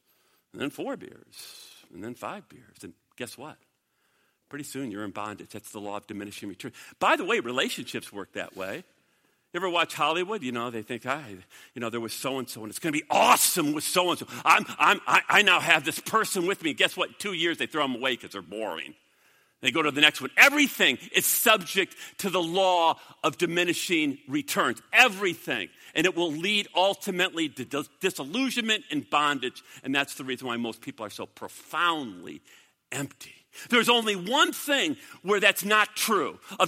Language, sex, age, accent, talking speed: English, male, 50-69, American, 190 wpm